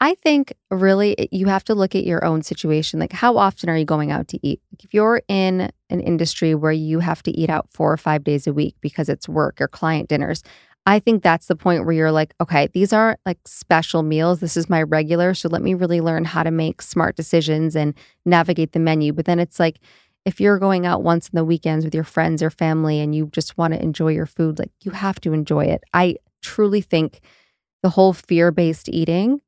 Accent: American